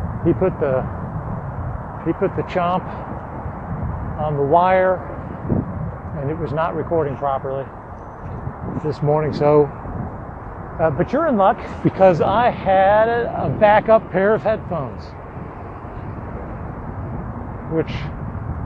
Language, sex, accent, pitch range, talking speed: English, male, American, 135-180 Hz, 105 wpm